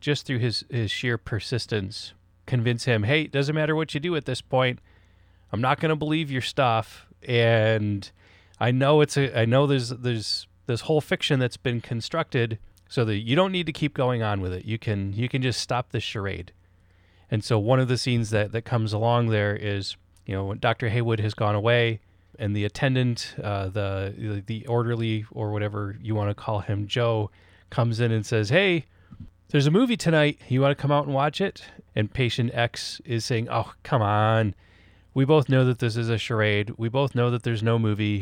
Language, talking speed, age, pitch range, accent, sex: English, 210 wpm, 30-49, 100-130 Hz, American, male